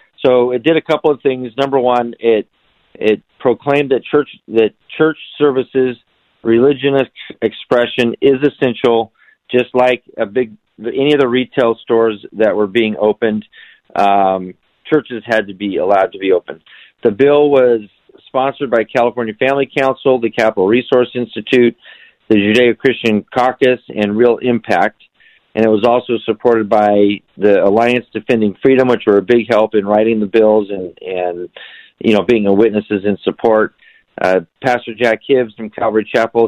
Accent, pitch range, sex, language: American, 105-130 Hz, male, English